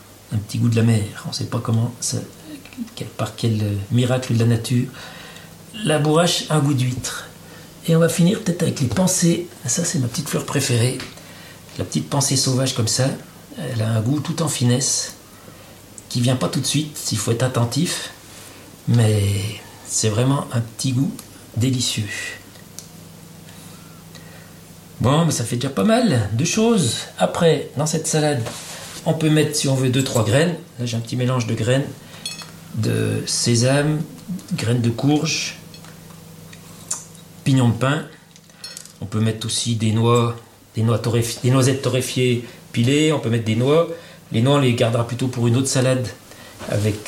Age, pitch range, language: 50-69, 115-155 Hz, French